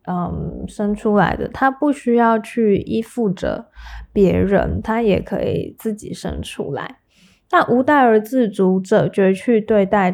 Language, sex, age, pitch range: Chinese, female, 10-29, 190-235 Hz